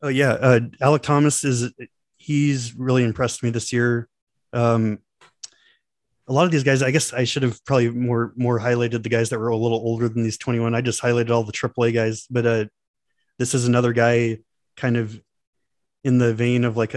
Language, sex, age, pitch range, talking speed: English, male, 20-39, 115-125 Hz, 200 wpm